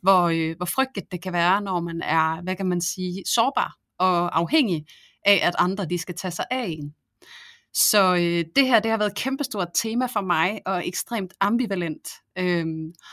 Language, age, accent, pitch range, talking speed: Danish, 30-49, native, 175-210 Hz, 185 wpm